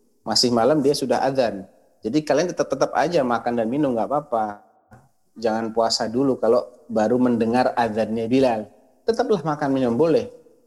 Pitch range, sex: 100-135 Hz, male